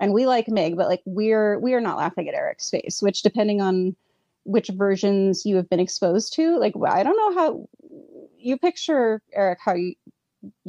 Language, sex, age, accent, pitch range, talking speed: English, female, 30-49, American, 175-220 Hz, 190 wpm